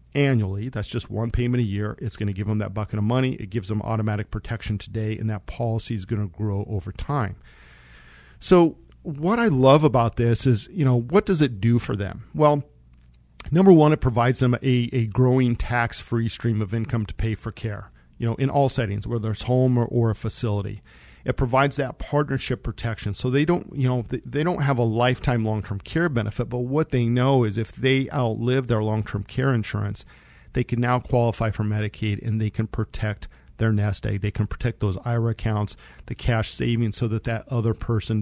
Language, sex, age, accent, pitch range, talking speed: English, male, 40-59, American, 105-130 Hz, 205 wpm